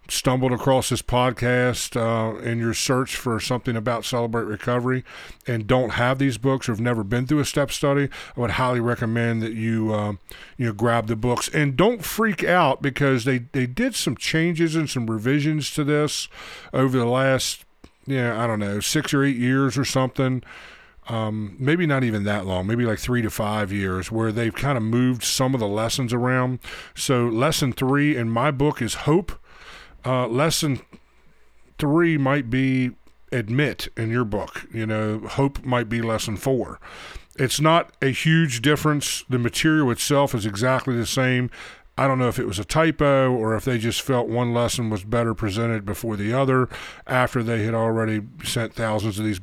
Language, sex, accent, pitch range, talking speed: English, male, American, 115-135 Hz, 190 wpm